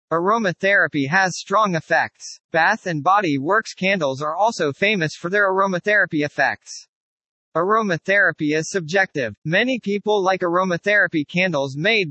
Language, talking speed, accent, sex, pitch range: English, 125 wpm, American, male, 155-210 Hz